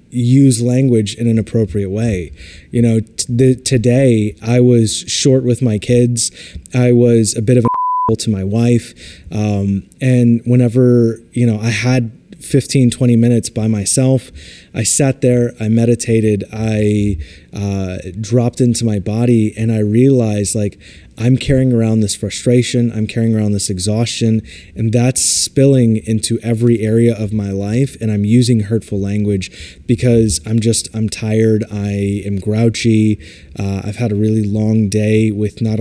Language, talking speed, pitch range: English, 155 wpm, 100-120 Hz